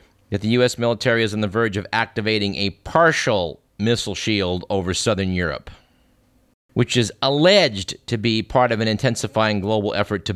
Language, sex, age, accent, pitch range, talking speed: English, male, 50-69, American, 100-140 Hz, 170 wpm